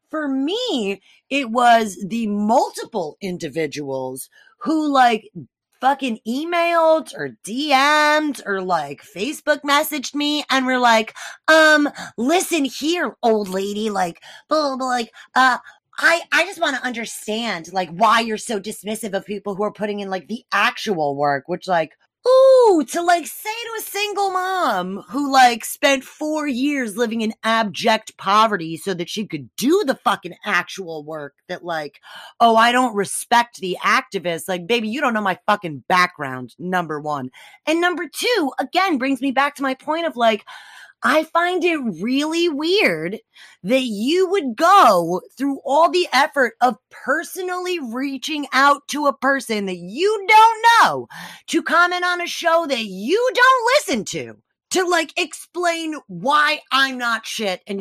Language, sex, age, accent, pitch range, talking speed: English, female, 20-39, American, 200-310 Hz, 160 wpm